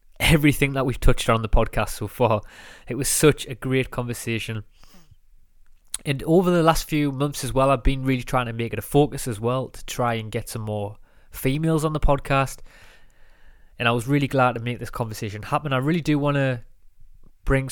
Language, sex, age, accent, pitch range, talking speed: English, male, 20-39, British, 115-140 Hz, 205 wpm